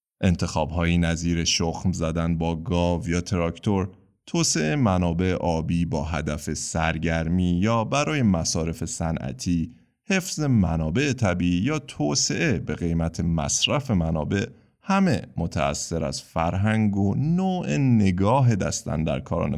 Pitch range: 85-130 Hz